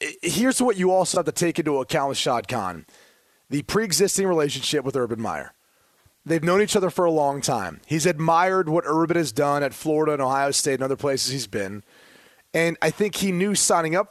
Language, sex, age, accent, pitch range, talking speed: English, male, 30-49, American, 150-190 Hz, 210 wpm